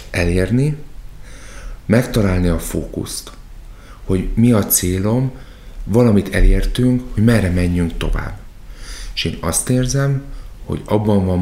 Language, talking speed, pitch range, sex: Hungarian, 110 wpm, 85-115 Hz, male